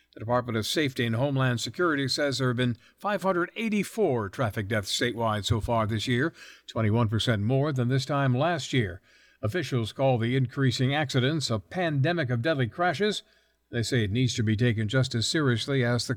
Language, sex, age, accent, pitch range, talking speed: English, male, 60-79, American, 115-150 Hz, 180 wpm